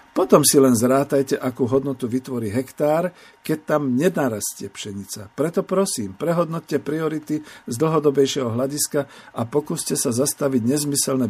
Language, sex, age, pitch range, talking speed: Slovak, male, 50-69, 120-155 Hz, 125 wpm